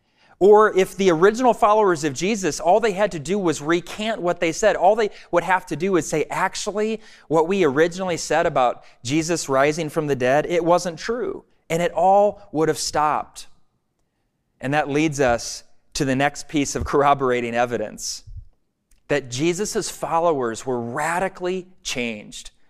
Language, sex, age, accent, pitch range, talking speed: English, male, 30-49, American, 150-205 Hz, 165 wpm